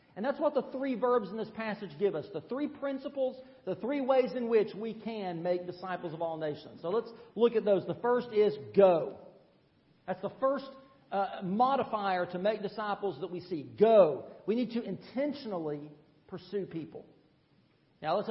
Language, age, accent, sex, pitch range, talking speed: English, 40-59, American, male, 195-265 Hz, 180 wpm